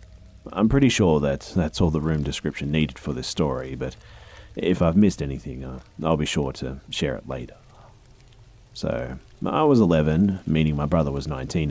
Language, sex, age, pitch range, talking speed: English, male, 30-49, 65-85 Hz, 175 wpm